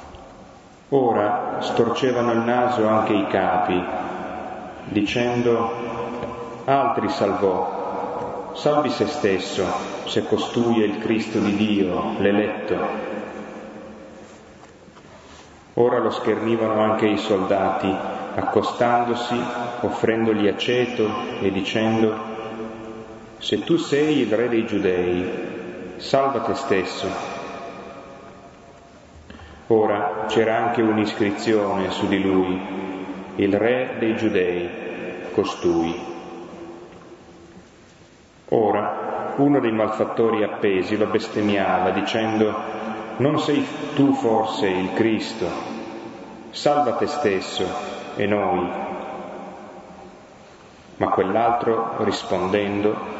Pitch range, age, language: 100-115 Hz, 30-49, Italian